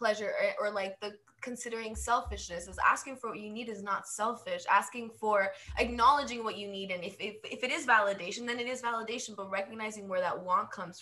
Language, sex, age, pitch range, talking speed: English, female, 20-39, 200-260 Hz, 210 wpm